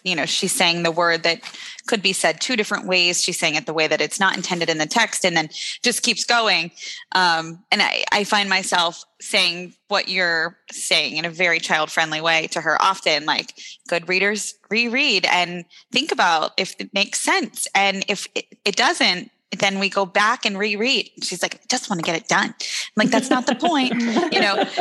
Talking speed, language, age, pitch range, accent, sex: 210 wpm, English, 20-39, 175-220 Hz, American, female